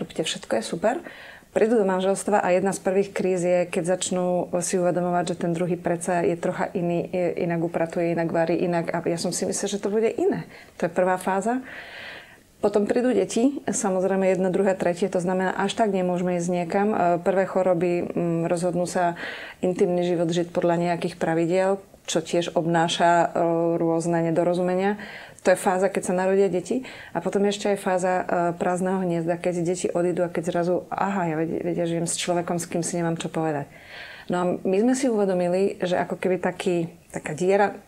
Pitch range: 175-195 Hz